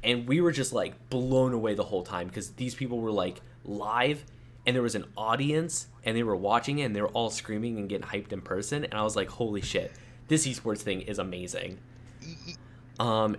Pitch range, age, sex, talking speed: 100-125 Hz, 10-29, male, 215 wpm